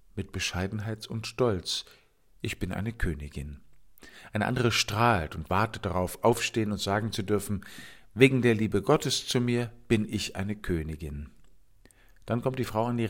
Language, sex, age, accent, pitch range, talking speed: German, male, 50-69, German, 90-115 Hz, 160 wpm